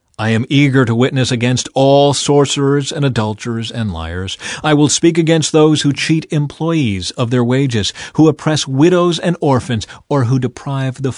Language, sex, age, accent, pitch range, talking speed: English, male, 40-59, American, 105-145 Hz, 170 wpm